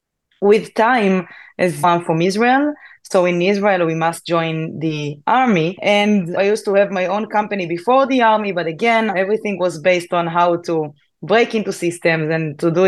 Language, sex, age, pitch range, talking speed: English, female, 20-39, 170-210 Hz, 180 wpm